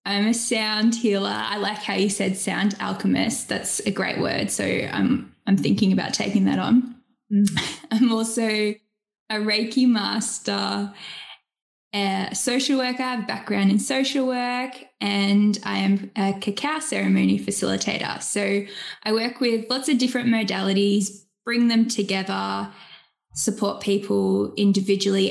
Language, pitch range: English, 195-235 Hz